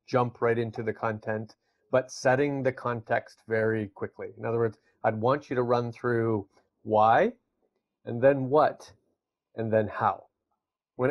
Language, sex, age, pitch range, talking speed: English, male, 40-59, 120-150 Hz, 150 wpm